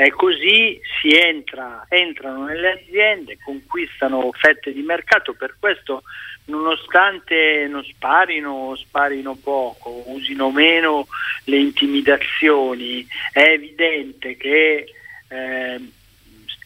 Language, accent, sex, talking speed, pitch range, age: Italian, native, male, 95 wpm, 125-155 Hz, 40-59